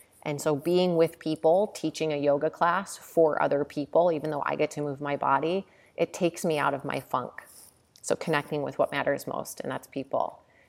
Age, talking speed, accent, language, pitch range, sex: 30-49, 200 wpm, American, English, 145-170 Hz, female